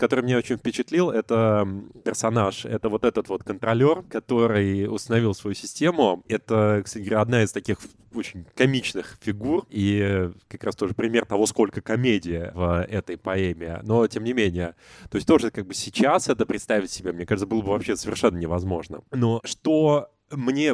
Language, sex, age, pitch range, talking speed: Russian, male, 20-39, 100-120 Hz, 170 wpm